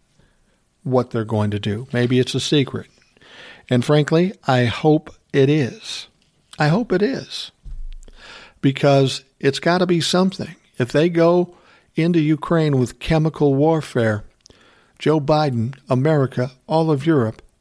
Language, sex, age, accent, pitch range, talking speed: English, male, 60-79, American, 120-155 Hz, 135 wpm